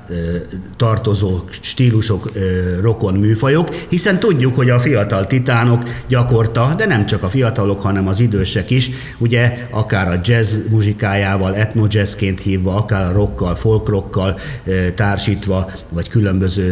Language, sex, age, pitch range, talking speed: Hungarian, male, 50-69, 95-120 Hz, 120 wpm